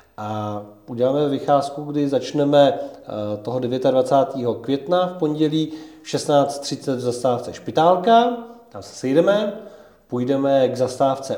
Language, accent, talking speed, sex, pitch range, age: Czech, native, 105 wpm, male, 120-145 Hz, 40-59